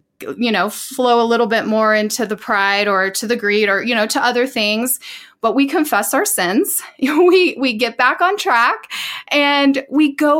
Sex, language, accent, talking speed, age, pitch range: female, English, American, 195 wpm, 30-49, 210-295 Hz